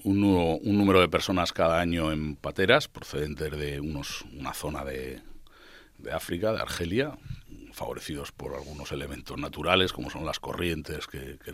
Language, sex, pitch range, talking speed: Spanish, male, 80-105 Hz, 150 wpm